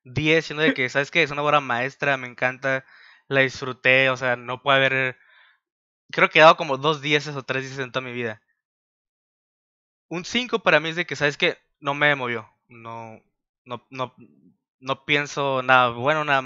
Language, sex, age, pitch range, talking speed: Spanish, male, 20-39, 130-170 Hz, 195 wpm